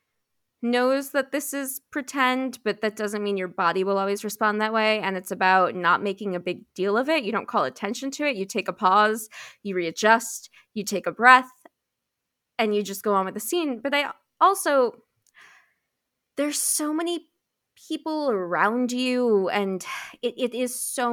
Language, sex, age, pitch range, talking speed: English, female, 20-39, 195-250 Hz, 180 wpm